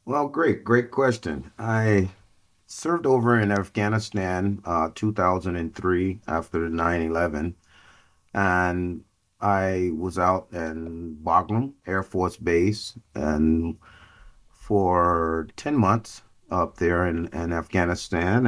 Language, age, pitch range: English, 30-49, 85-105 Hz